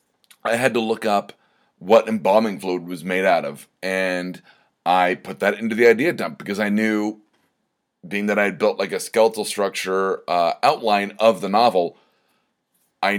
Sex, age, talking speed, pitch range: male, 30-49, 175 wpm, 95-115 Hz